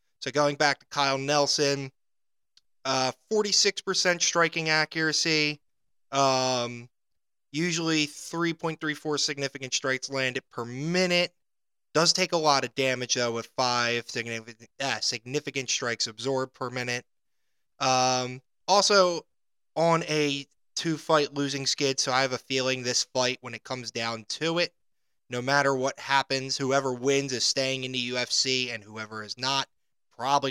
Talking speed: 140 wpm